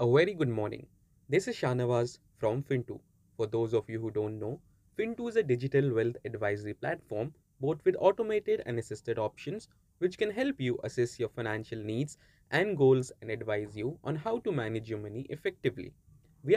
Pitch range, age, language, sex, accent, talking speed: 115-160 Hz, 20-39, English, male, Indian, 180 wpm